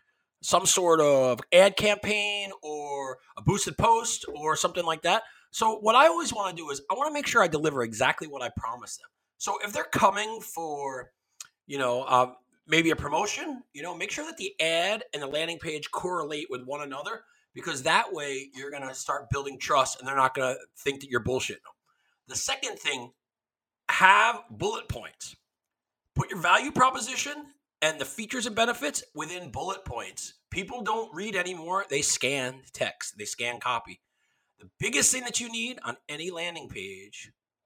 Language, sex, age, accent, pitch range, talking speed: English, male, 40-59, American, 145-225 Hz, 185 wpm